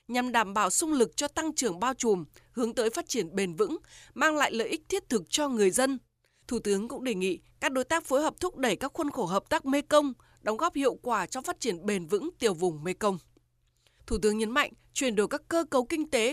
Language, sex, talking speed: Vietnamese, female, 245 wpm